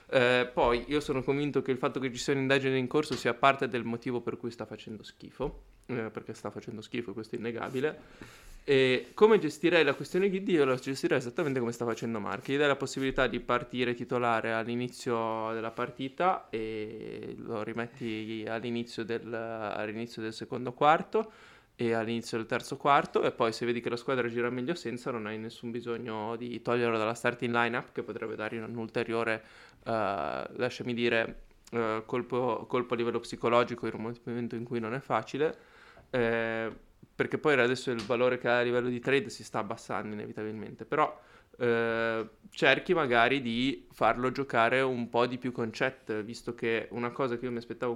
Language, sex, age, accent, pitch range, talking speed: Italian, male, 20-39, native, 115-130 Hz, 185 wpm